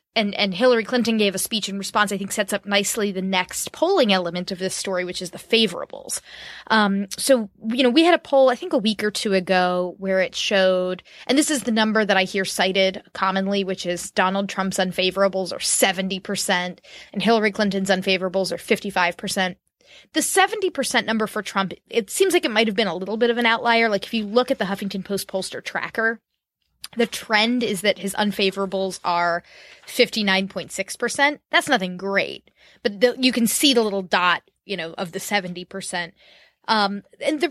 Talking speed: 195 wpm